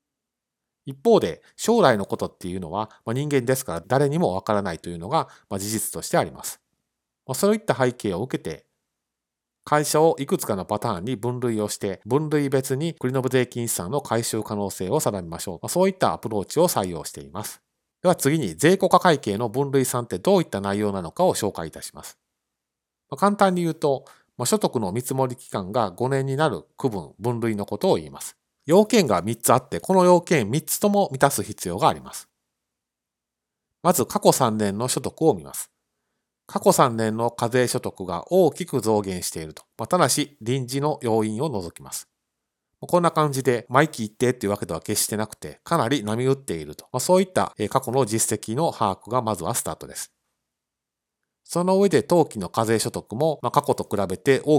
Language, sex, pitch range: Japanese, male, 105-150 Hz